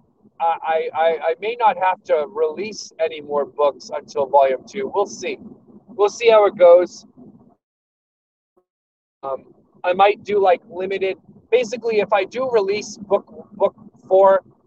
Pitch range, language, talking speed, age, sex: 170-230 Hz, English, 145 wpm, 30-49, male